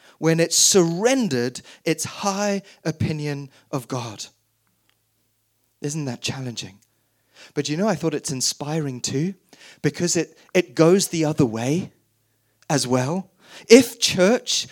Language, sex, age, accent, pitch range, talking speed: English, male, 30-49, British, 125-190 Hz, 120 wpm